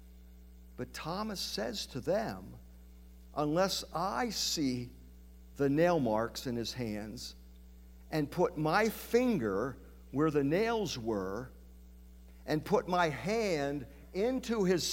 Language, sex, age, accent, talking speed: English, male, 50-69, American, 115 wpm